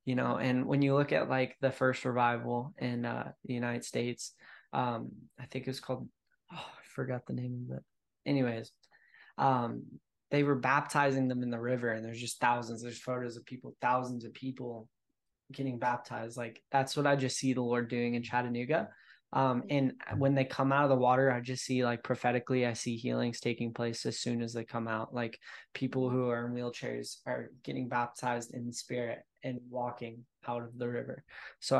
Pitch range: 120-135 Hz